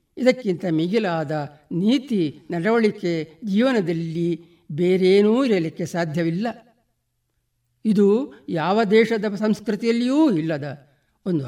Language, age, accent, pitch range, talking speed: Kannada, 60-79, native, 165-220 Hz, 75 wpm